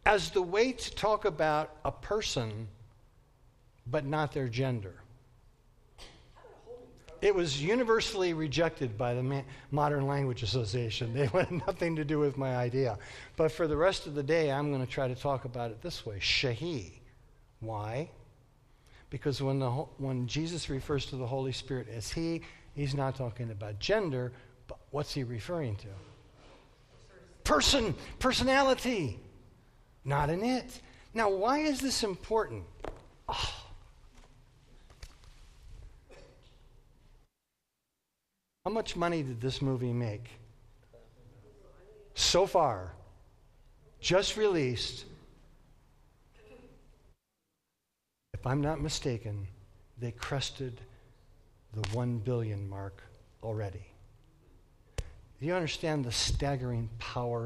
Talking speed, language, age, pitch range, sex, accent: 115 wpm, English, 60-79, 115-155 Hz, male, American